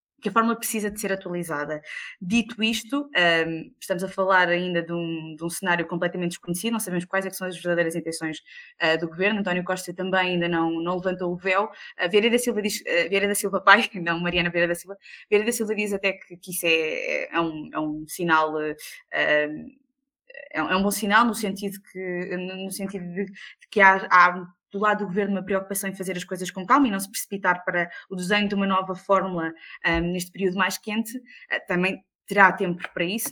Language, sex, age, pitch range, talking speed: Portuguese, female, 20-39, 175-215 Hz, 205 wpm